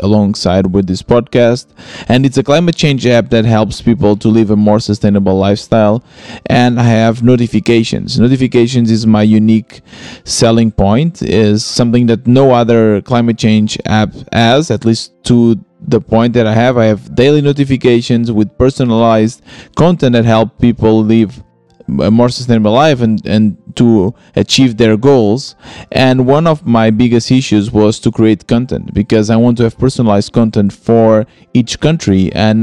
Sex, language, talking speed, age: male, English, 160 wpm, 20-39